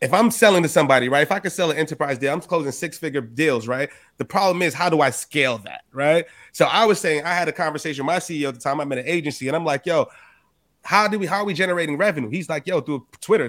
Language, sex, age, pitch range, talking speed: English, male, 30-49, 150-185 Hz, 275 wpm